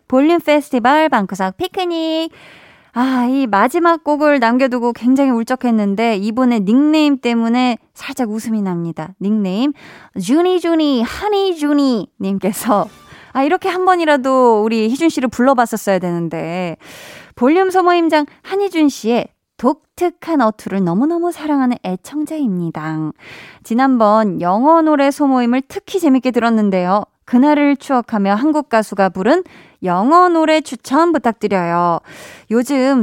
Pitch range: 205-300 Hz